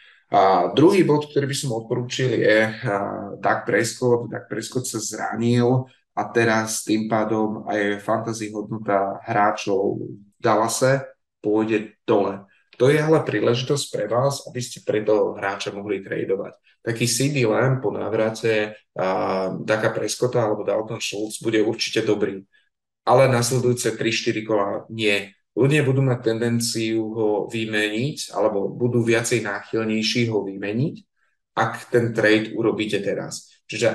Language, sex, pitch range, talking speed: Slovak, male, 105-125 Hz, 130 wpm